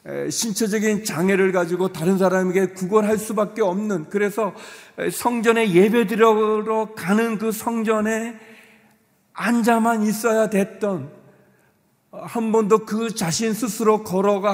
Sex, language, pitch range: male, Korean, 170-220 Hz